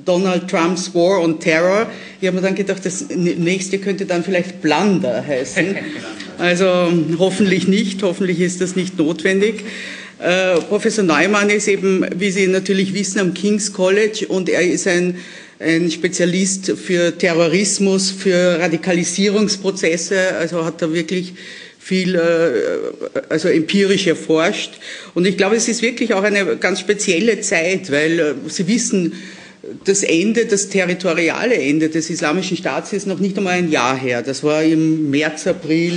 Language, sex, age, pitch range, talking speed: German, female, 50-69, 165-195 Hz, 150 wpm